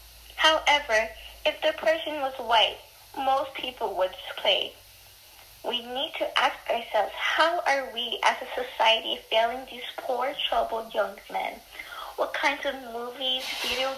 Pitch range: 210-280 Hz